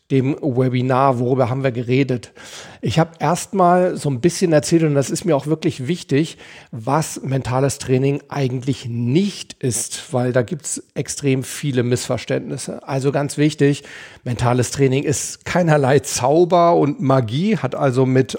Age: 40-59